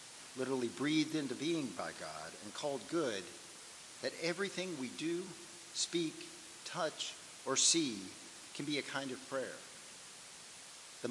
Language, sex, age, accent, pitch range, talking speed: English, male, 50-69, American, 120-160 Hz, 130 wpm